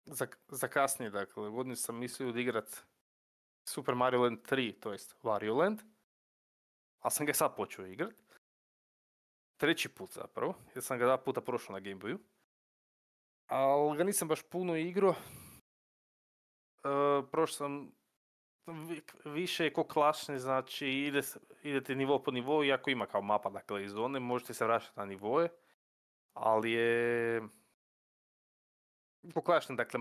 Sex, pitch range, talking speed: male, 105-140 Hz, 130 wpm